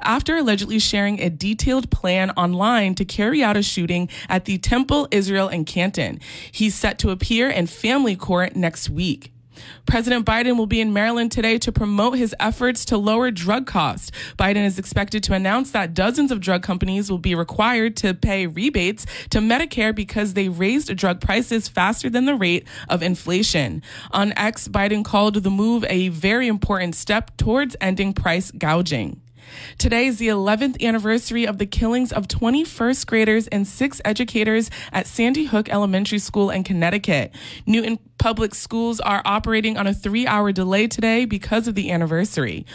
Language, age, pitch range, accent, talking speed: English, 20-39, 185-225 Hz, American, 170 wpm